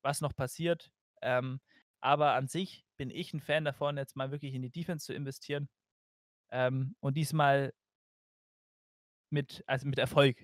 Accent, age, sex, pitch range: German, 20-39, male, 130-150 Hz